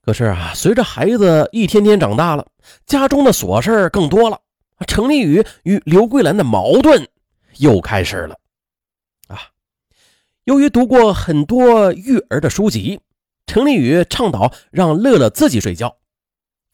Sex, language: male, Chinese